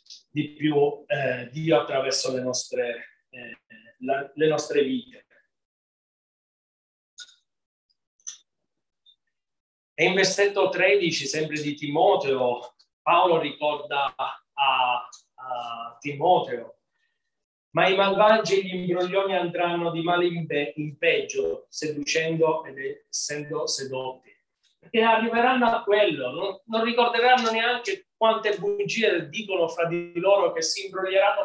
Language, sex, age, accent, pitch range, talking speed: Italian, male, 30-49, native, 150-225 Hz, 105 wpm